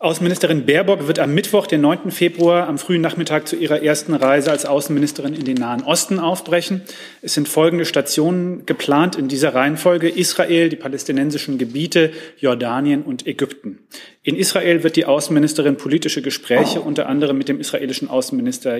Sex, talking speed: male, 160 wpm